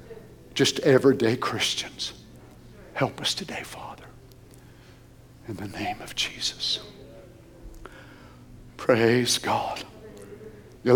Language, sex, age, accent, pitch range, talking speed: English, male, 60-79, American, 115-150 Hz, 80 wpm